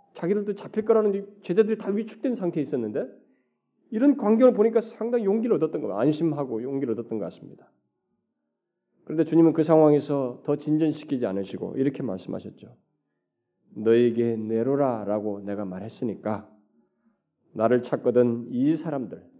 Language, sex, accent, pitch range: Korean, male, native, 115-185 Hz